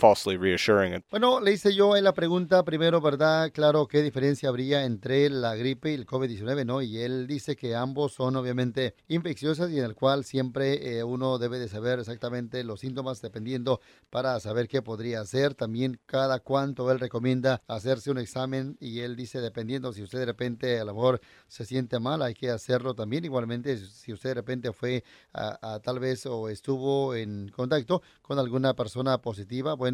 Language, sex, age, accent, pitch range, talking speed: Spanish, male, 30-49, Mexican, 120-140 Hz, 185 wpm